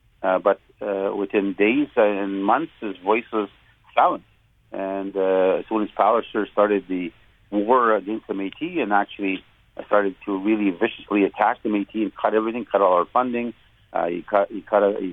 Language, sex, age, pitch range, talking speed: English, male, 40-59, 95-115 Hz, 185 wpm